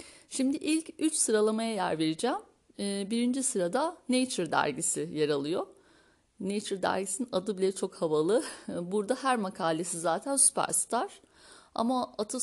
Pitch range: 195-275 Hz